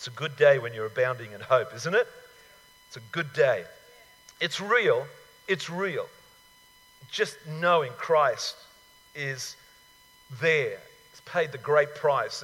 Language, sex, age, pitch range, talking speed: English, male, 50-69, 145-205 Hz, 140 wpm